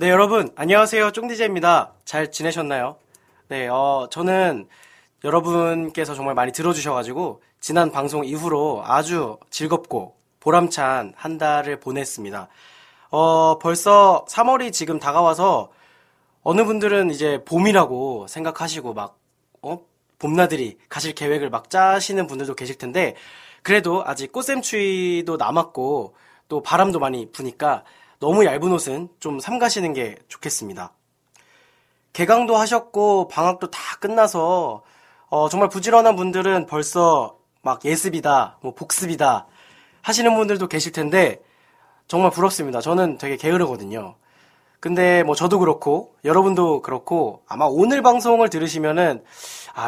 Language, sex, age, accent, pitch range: Korean, male, 20-39, native, 145-190 Hz